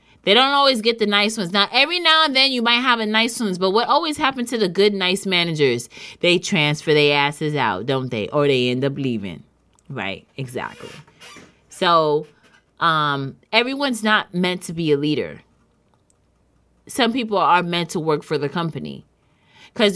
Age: 20-39